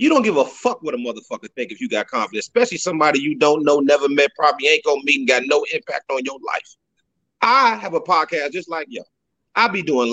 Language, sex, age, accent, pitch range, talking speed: English, male, 30-49, American, 190-290 Hz, 245 wpm